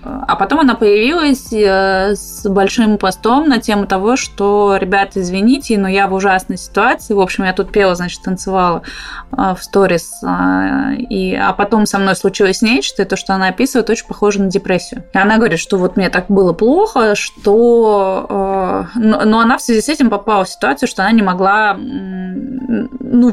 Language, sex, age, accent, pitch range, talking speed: Russian, female, 20-39, native, 185-220 Hz, 165 wpm